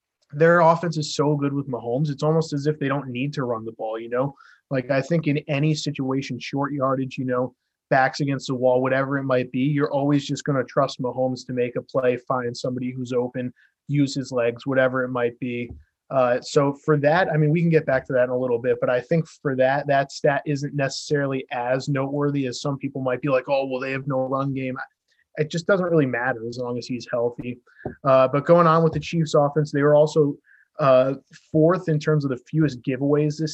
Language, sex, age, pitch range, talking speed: English, male, 20-39, 130-150 Hz, 235 wpm